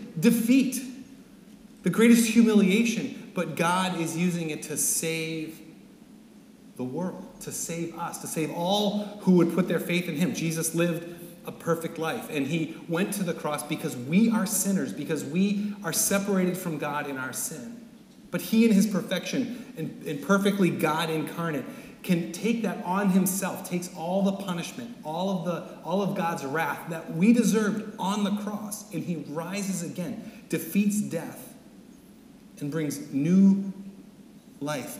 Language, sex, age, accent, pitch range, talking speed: English, male, 30-49, American, 165-220 Hz, 160 wpm